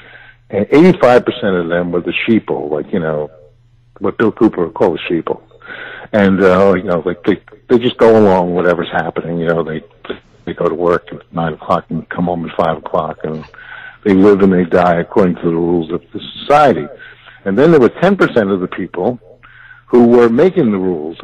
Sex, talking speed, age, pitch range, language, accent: male, 205 wpm, 60-79, 90-120 Hz, English, American